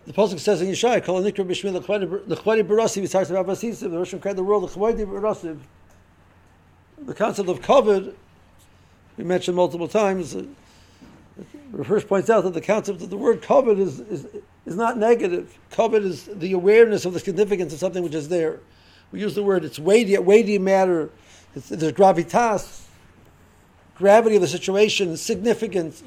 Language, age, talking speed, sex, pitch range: English, 60-79, 150 wpm, male, 160-215 Hz